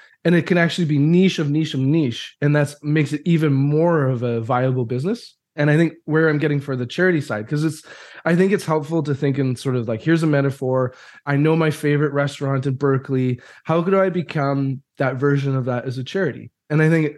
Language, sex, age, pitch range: English, male, 20-39, 135-165 Hz